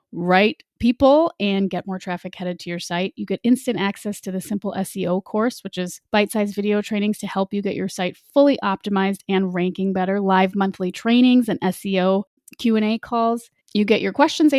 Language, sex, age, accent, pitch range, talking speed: English, female, 30-49, American, 190-240 Hz, 195 wpm